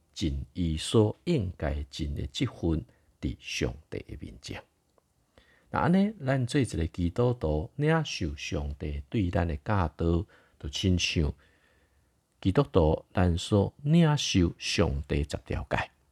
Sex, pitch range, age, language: male, 80-120 Hz, 50-69, Chinese